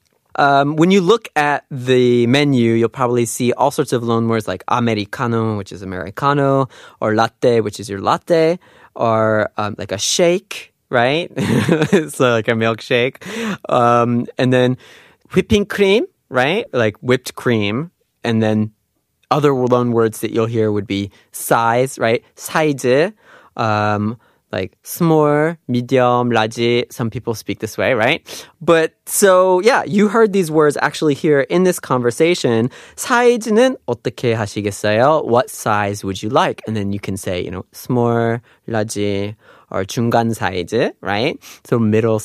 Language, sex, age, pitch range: Korean, male, 20-39, 110-150 Hz